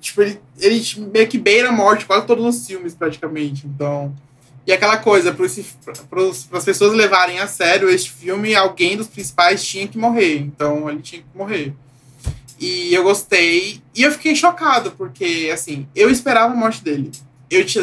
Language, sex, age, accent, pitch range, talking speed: Portuguese, male, 20-39, Brazilian, 145-195 Hz, 175 wpm